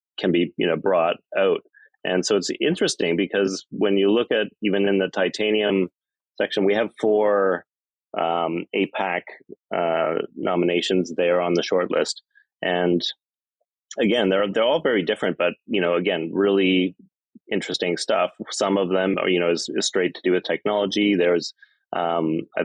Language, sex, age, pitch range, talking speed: English, male, 30-49, 85-105 Hz, 160 wpm